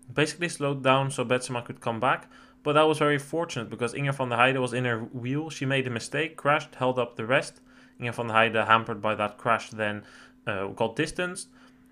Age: 20-39